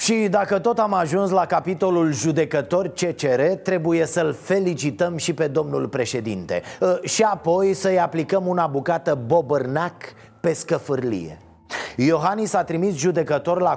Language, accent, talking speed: Romanian, native, 130 wpm